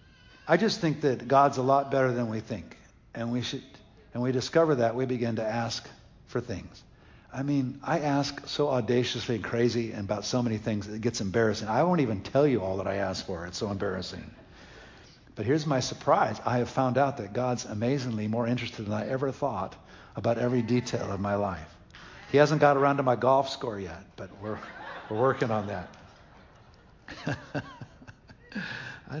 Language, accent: English, American